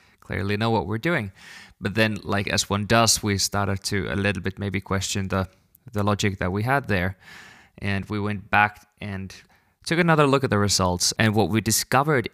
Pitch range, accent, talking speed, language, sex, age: 95-115 Hz, Finnish, 200 wpm, English, male, 20-39